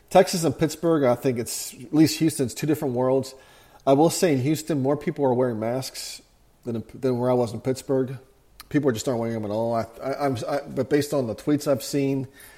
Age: 40-59